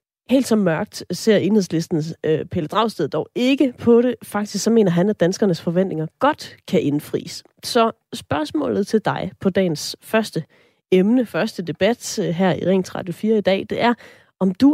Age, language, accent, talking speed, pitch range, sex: 30-49, Danish, native, 170 wpm, 170-230 Hz, female